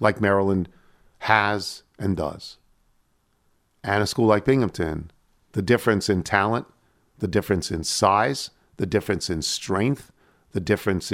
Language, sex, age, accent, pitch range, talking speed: English, male, 50-69, American, 90-120 Hz, 130 wpm